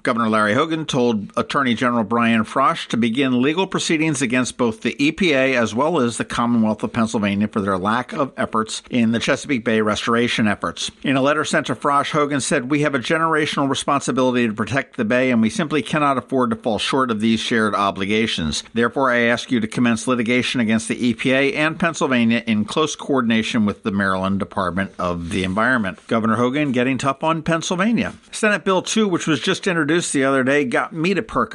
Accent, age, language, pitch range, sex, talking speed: American, 50-69, English, 115-160 Hz, male, 200 wpm